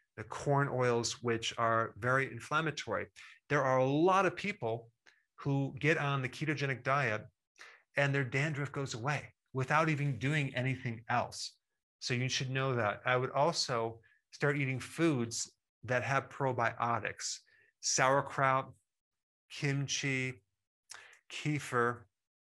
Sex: male